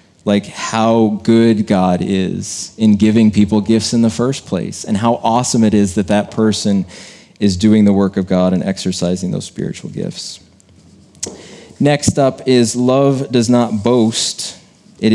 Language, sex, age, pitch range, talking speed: English, male, 30-49, 100-125 Hz, 160 wpm